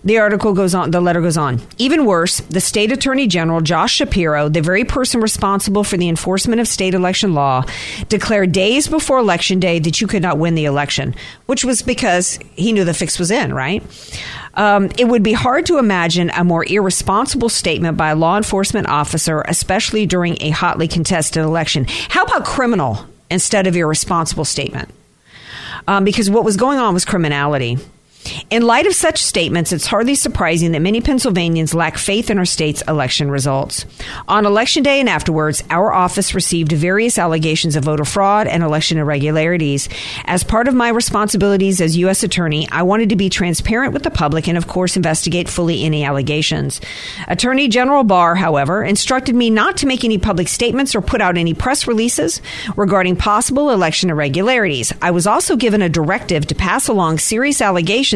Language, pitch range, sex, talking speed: English, 160-215 Hz, female, 180 wpm